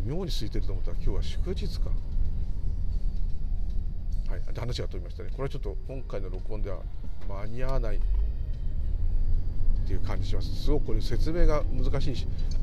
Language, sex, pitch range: Japanese, male, 85-120 Hz